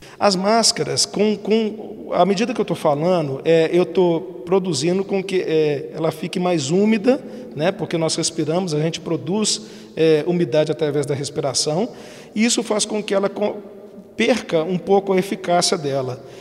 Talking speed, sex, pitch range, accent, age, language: 145 wpm, male, 160-195 Hz, Brazilian, 50-69, Portuguese